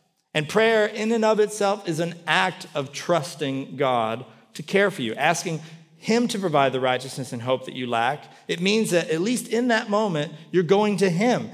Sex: male